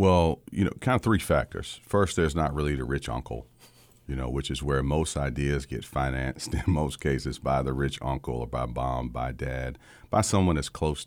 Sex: male